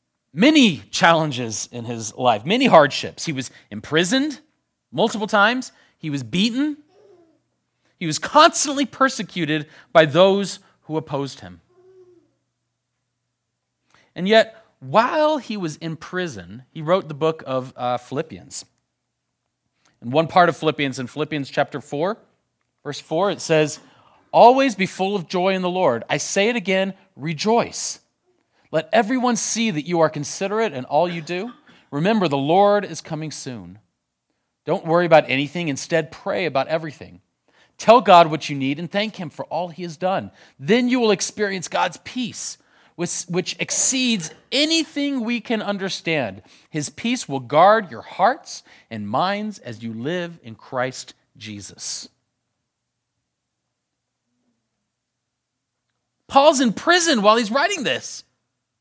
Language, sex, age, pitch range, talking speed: English, male, 40-59, 140-220 Hz, 140 wpm